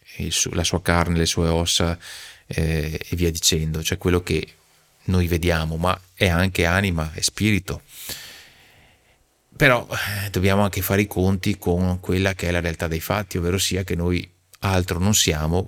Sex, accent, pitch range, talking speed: male, native, 85-100 Hz, 160 wpm